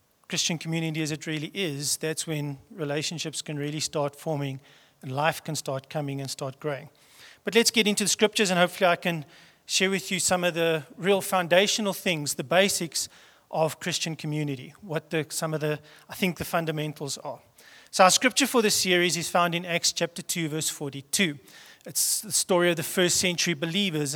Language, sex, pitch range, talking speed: English, male, 155-185 Hz, 190 wpm